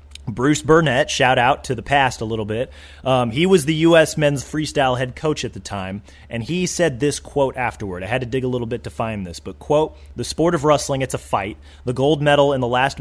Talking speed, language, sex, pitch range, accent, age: 245 wpm, English, male, 110-140 Hz, American, 30-49